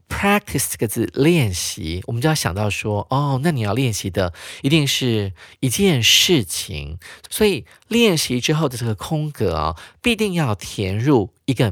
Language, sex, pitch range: Chinese, male, 100-160 Hz